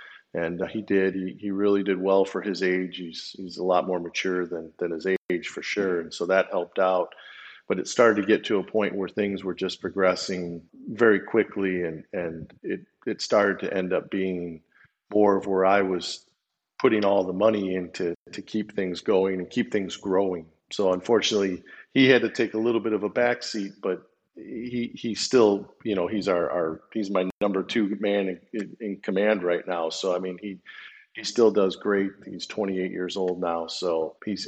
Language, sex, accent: English, male, American